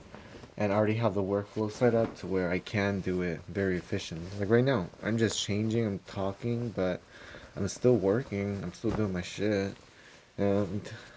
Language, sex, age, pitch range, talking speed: English, male, 20-39, 90-110 Hz, 175 wpm